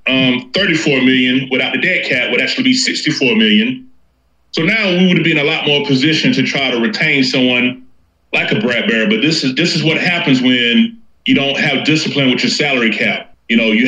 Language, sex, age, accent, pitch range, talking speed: English, male, 30-49, American, 120-155 Hz, 210 wpm